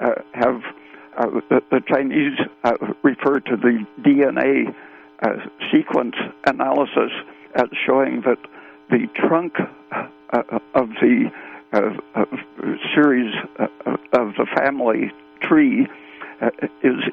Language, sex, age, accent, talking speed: English, male, 60-79, American, 110 wpm